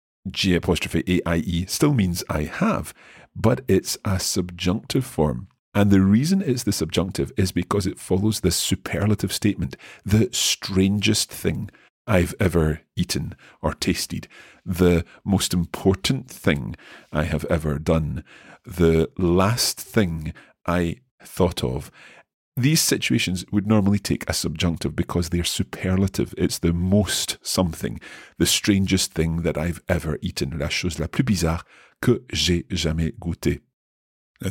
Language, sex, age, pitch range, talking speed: English, male, 40-59, 85-100 Hz, 130 wpm